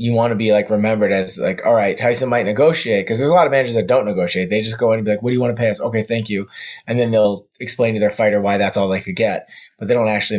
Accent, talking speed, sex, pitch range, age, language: American, 325 wpm, male, 100-120 Hz, 20-39, English